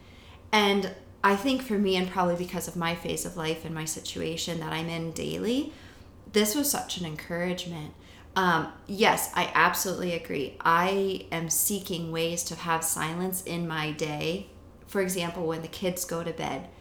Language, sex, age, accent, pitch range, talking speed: English, female, 30-49, American, 160-185 Hz, 170 wpm